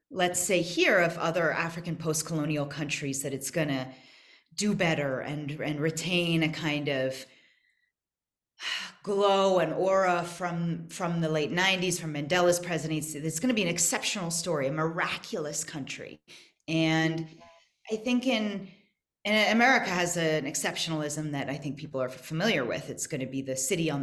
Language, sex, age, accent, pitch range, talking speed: English, female, 30-49, American, 155-205 Hz, 150 wpm